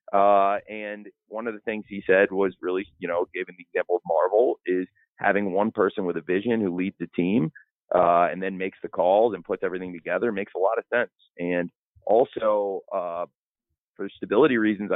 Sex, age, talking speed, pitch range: male, 30-49, 195 wpm, 90-105 Hz